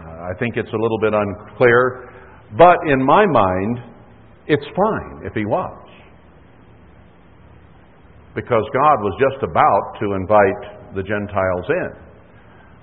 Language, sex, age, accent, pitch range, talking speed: English, male, 60-79, American, 105-130 Hz, 120 wpm